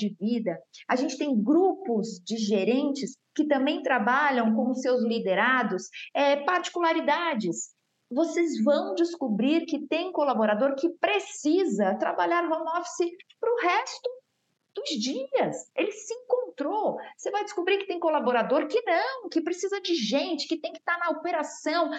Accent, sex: Brazilian, female